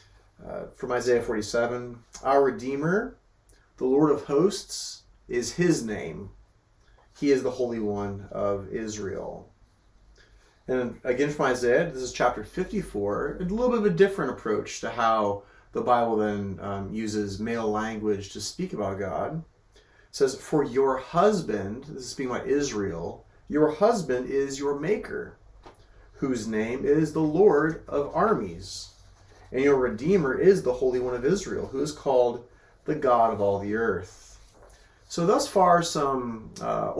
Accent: American